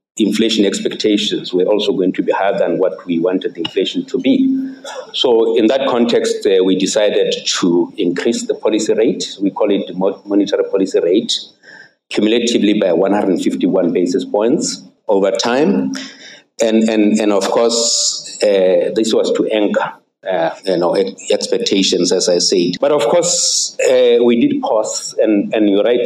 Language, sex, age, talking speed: English, male, 50-69, 155 wpm